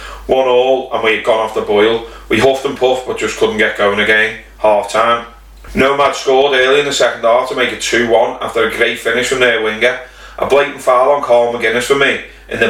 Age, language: 30-49, English